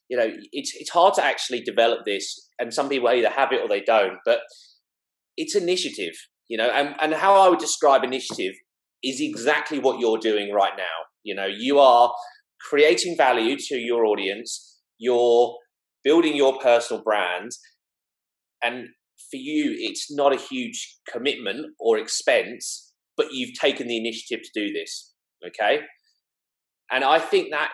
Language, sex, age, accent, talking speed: English, male, 30-49, British, 160 wpm